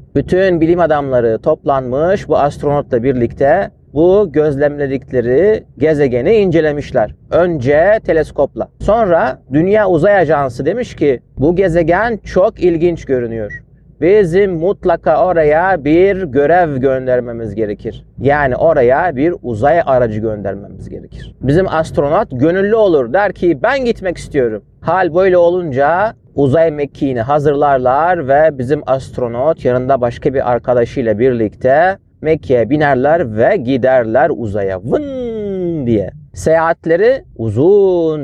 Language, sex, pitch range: Turkish, male, 125-175 Hz